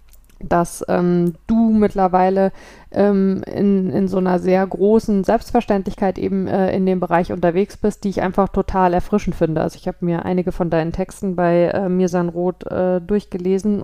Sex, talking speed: female, 165 wpm